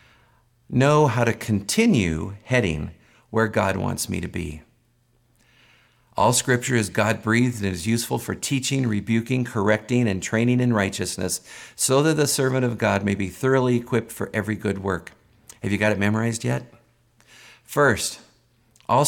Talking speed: 150 wpm